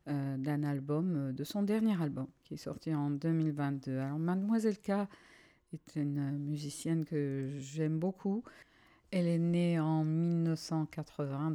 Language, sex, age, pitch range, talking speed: English, female, 50-69, 140-165 Hz, 130 wpm